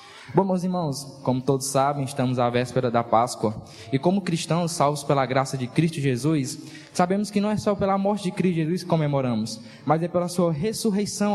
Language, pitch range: Portuguese, 120-170 Hz